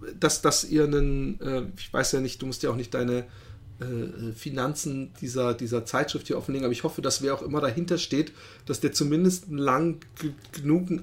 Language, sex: German, male